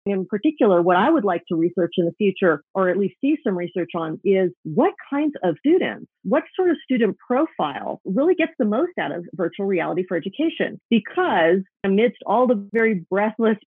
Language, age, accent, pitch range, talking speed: English, 40-59, American, 180-255 Hz, 195 wpm